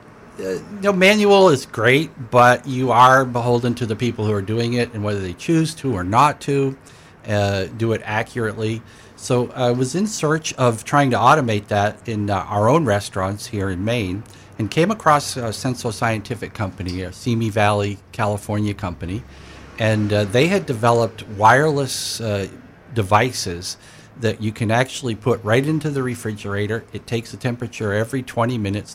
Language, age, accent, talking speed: English, 50-69, American, 170 wpm